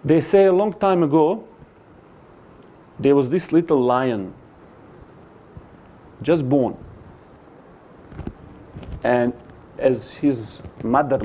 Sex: male